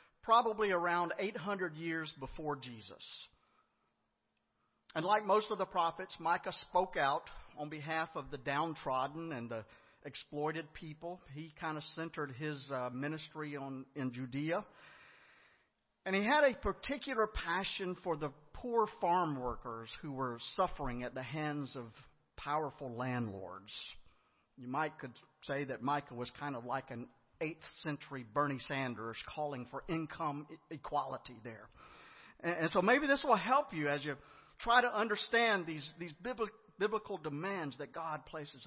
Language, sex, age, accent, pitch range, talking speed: English, male, 50-69, American, 130-175 Hz, 145 wpm